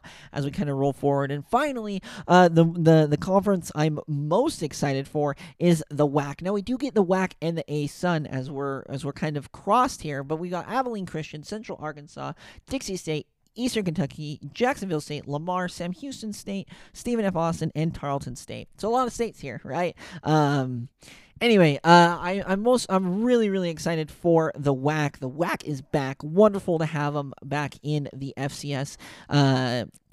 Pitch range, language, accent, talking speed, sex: 145-180 Hz, English, American, 185 wpm, male